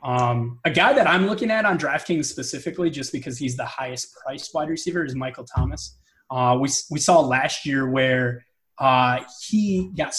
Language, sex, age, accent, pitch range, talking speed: English, male, 20-39, American, 125-155 Hz, 185 wpm